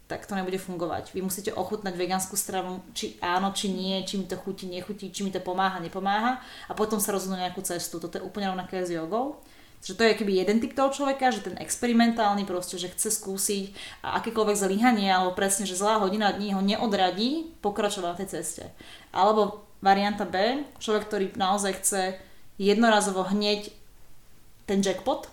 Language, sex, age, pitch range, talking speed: Slovak, female, 20-39, 185-215 Hz, 180 wpm